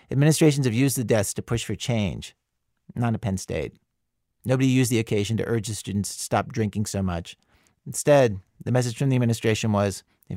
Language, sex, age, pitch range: English, male, 40-59, 100-125 Hz